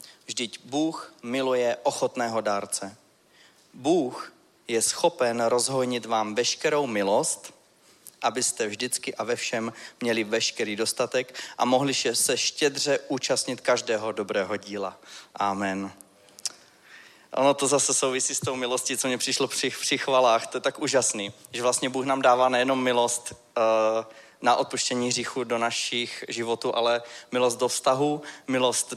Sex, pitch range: male, 115-135 Hz